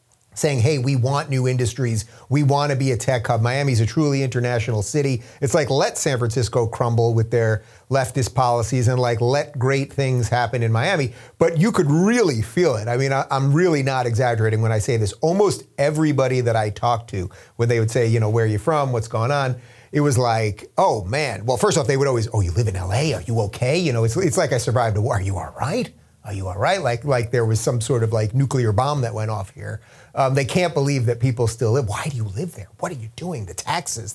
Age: 30-49